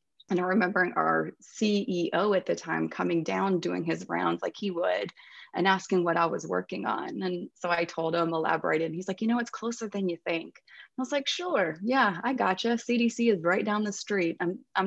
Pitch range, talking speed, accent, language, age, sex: 155-205 Hz, 220 wpm, American, English, 30-49, female